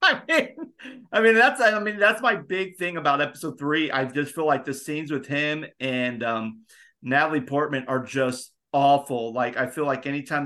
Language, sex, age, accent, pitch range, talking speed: English, male, 40-59, American, 130-155 Hz, 195 wpm